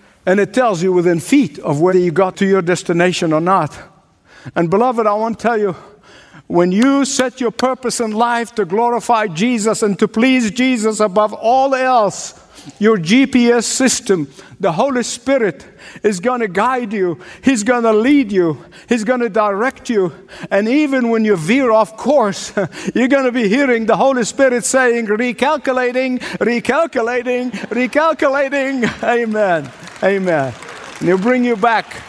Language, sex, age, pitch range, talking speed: English, male, 60-79, 190-250 Hz, 160 wpm